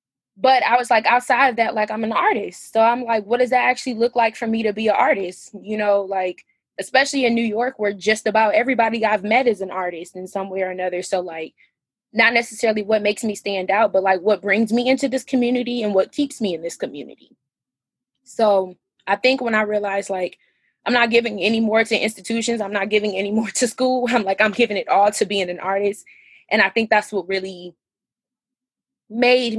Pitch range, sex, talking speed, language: 195-235 Hz, female, 220 wpm, English